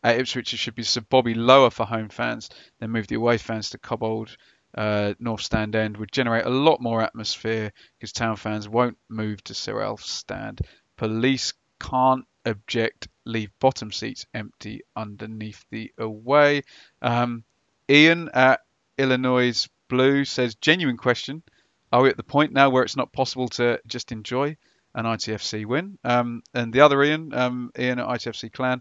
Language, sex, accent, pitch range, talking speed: English, male, British, 110-130 Hz, 170 wpm